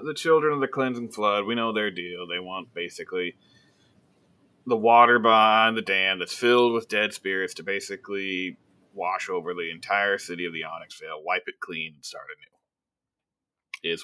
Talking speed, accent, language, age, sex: 175 wpm, American, English, 30-49, male